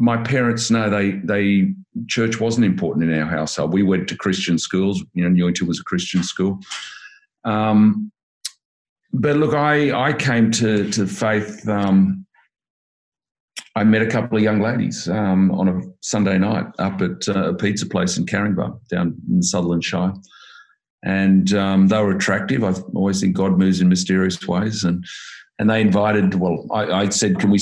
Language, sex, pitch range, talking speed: English, male, 95-115 Hz, 175 wpm